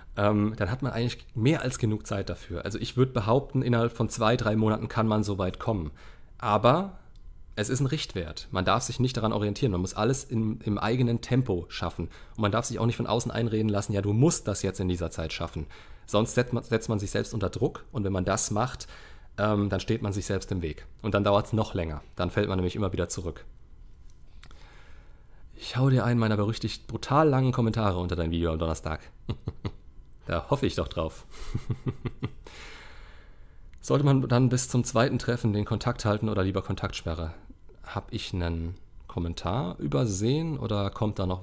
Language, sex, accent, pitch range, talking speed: German, male, German, 90-120 Hz, 195 wpm